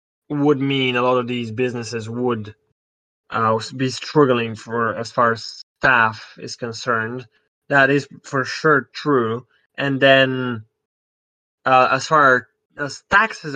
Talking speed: 135 wpm